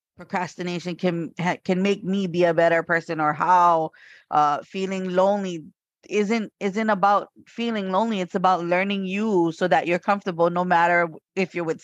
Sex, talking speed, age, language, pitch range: female, 160 wpm, 20-39, English, 165-195 Hz